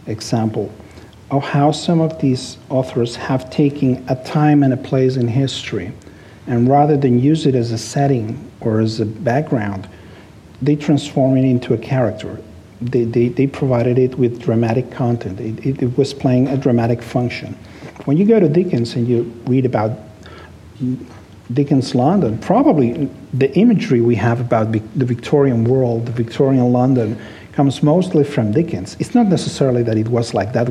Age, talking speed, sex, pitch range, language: 50-69, 165 wpm, male, 115-140 Hz, English